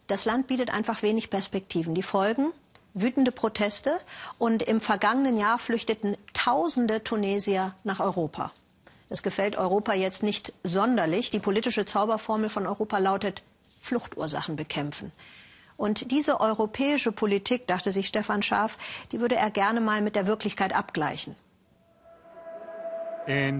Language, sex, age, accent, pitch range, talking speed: German, male, 50-69, German, 140-210 Hz, 130 wpm